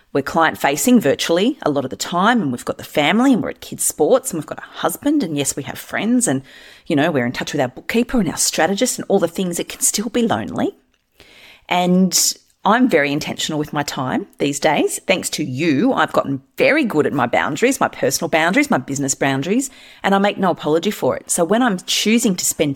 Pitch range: 155-235 Hz